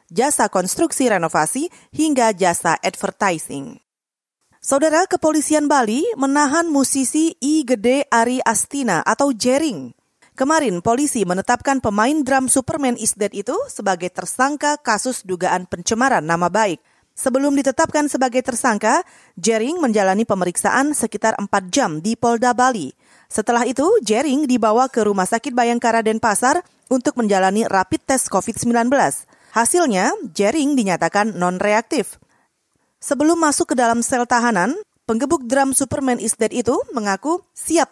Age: 30-49